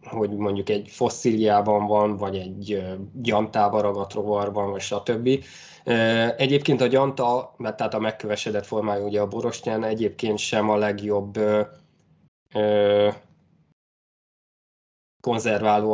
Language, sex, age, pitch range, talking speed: Hungarian, male, 20-39, 105-120 Hz, 100 wpm